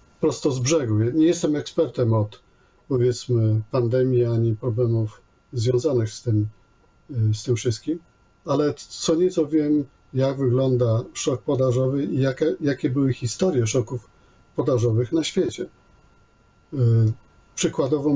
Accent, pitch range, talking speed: native, 110-145 Hz, 115 wpm